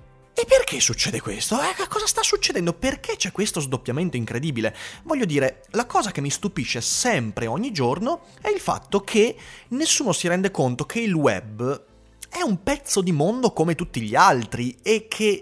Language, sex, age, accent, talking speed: Italian, male, 30-49, native, 175 wpm